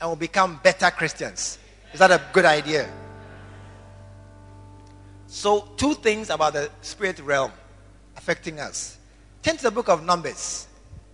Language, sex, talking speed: English, male, 130 wpm